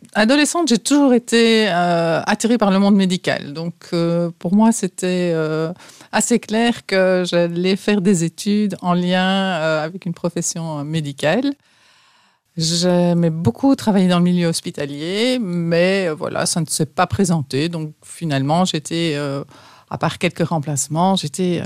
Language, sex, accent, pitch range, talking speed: French, female, French, 160-195 Hz, 150 wpm